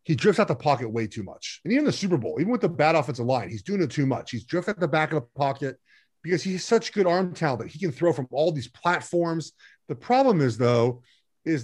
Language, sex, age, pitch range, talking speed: English, male, 30-49, 140-185 Hz, 265 wpm